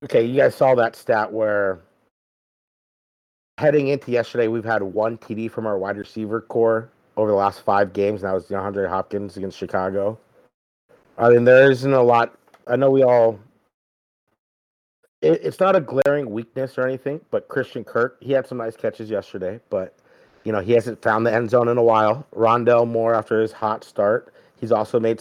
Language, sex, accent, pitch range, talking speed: English, male, American, 110-140 Hz, 195 wpm